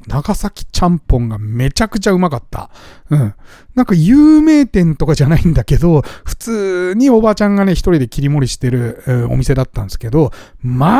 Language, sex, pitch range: Japanese, male, 125-200 Hz